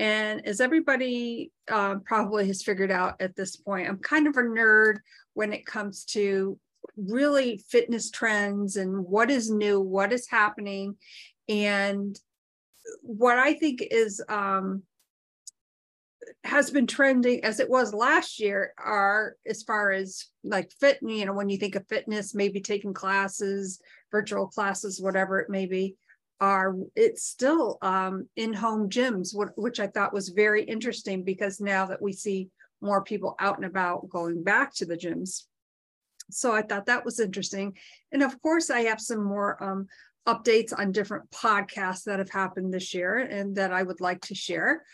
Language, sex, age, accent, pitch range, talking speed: English, female, 40-59, American, 195-240 Hz, 165 wpm